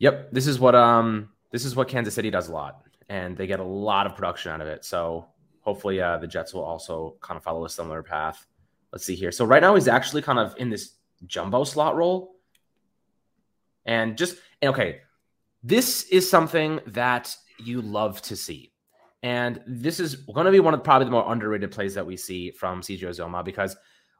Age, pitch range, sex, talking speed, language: 20-39, 110-160 Hz, male, 205 wpm, English